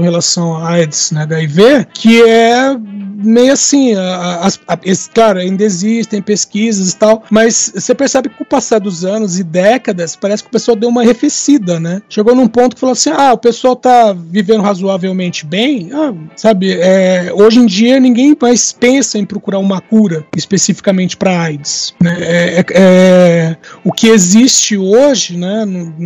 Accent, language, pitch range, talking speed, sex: Brazilian, Portuguese, 190-245 Hz, 170 wpm, male